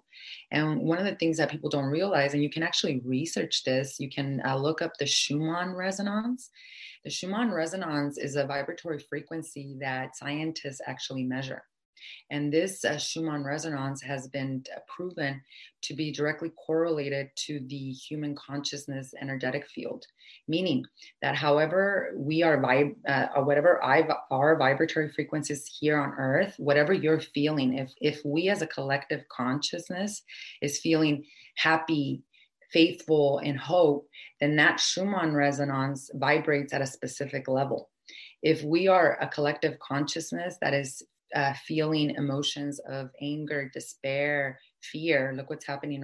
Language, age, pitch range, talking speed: English, 30-49, 135-160 Hz, 140 wpm